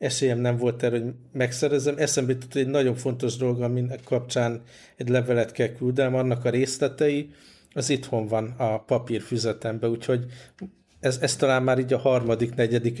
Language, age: Hungarian, 50-69